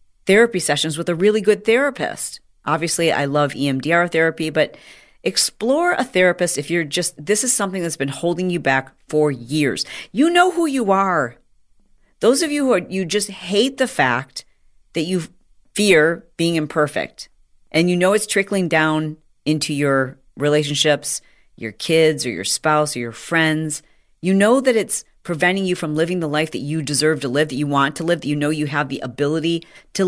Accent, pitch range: American, 150-190 Hz